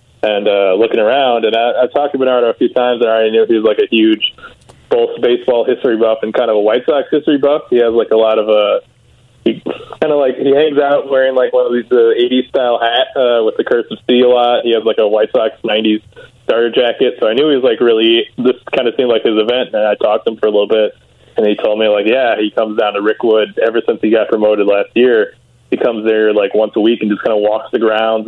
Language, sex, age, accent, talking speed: English, male, 20-39, American, 275 wpm